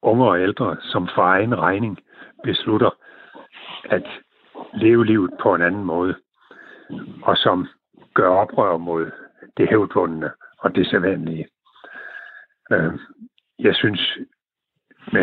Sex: male